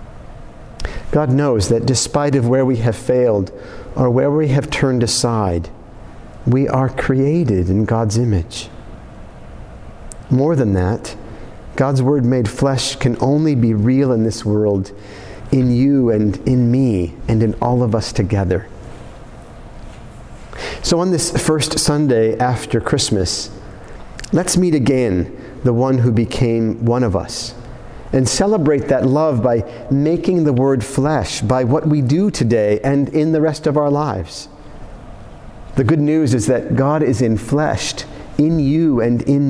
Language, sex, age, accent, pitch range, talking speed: English, male, 50-69, American, 110-140 Hz, 145 wpm